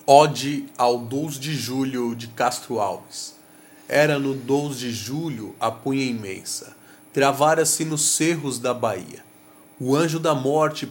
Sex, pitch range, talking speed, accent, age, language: male, 125-180 Hz, 140 wpm, Brazilian, 30-49, Portuguese